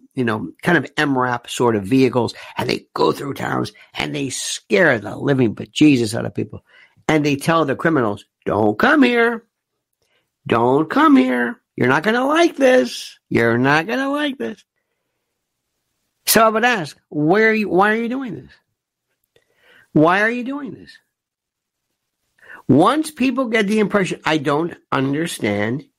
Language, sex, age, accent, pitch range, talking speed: English, male, 60-79, American, 125-190 Hz, 155 wpm